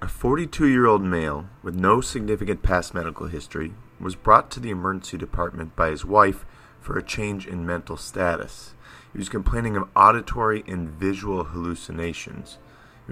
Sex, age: male, 40-59